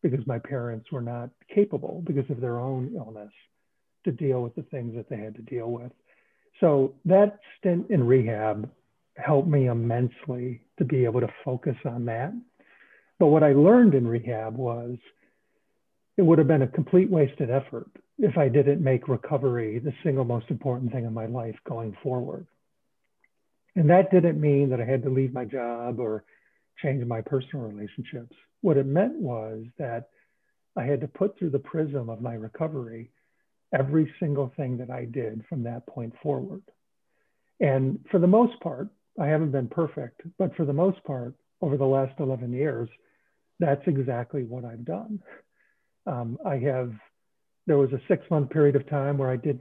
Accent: American